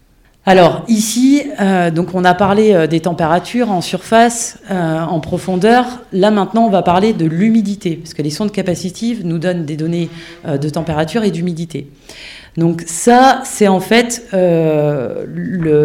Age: 30-49